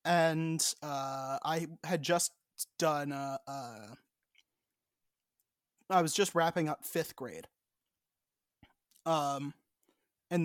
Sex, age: male, 20-39